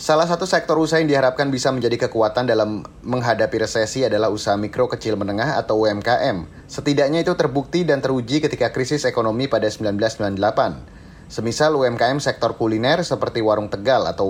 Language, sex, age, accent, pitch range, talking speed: Indonesian, male, 30-49, native, 115-150 Hz, 155 wpm